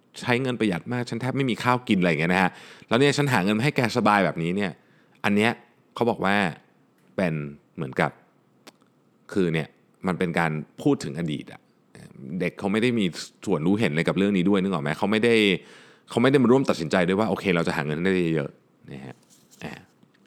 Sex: male